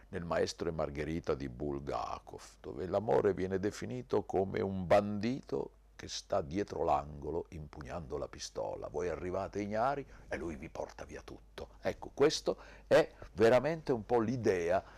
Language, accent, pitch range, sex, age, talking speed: Italian, native, 90-115 Hz, male, 50-69, 145 wpm